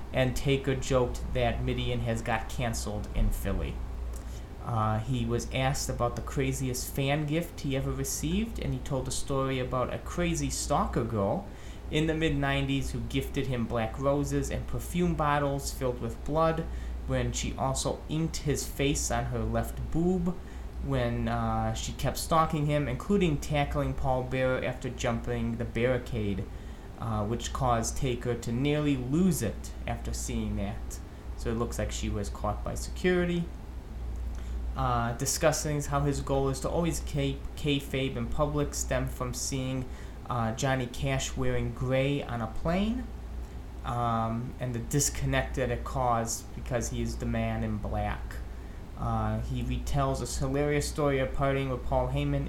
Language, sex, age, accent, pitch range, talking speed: English, male, 30-49, American, 115-140 Hz, 160 wpm